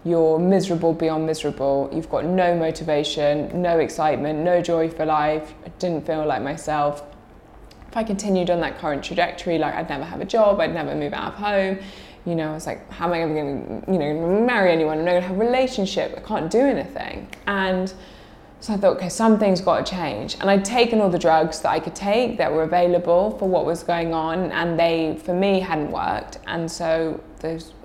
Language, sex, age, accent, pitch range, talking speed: English, female, 20-39, British, 160-195 Hz, 215 wpm